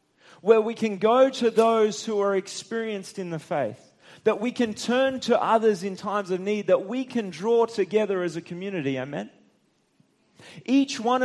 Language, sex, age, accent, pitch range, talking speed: English, male, 30-49, Australian, 185-230 Hz, 175 wpm